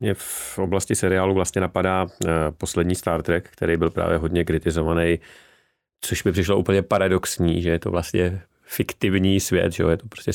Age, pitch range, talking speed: 30-49, 80-95 Hz, 175 wpm